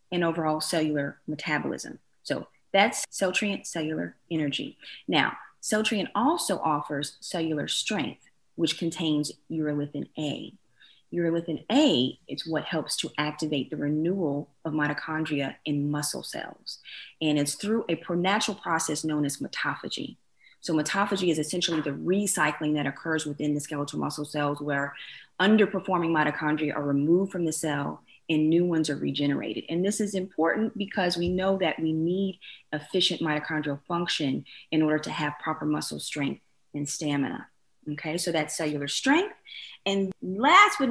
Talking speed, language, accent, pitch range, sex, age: 145 wpm, English, American, 150-180 Hz, female, 30-49